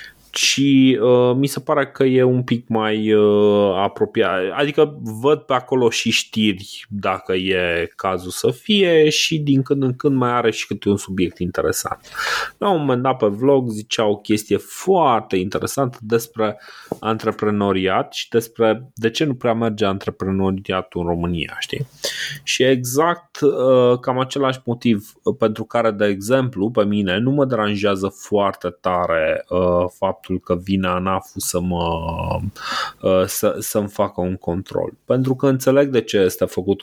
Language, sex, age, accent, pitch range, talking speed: Romanian, male, 20-39, native, 100-130 Hz, 145 wpm